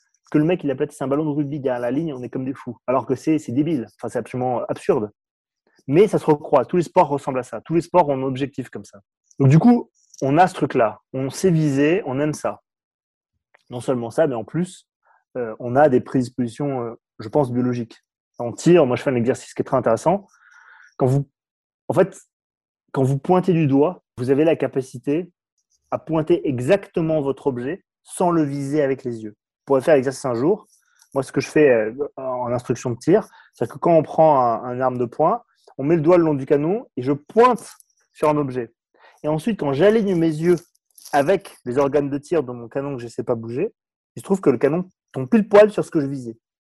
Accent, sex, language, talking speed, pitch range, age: French, male, French, 235 wpm, 125-160 Hz, 20-39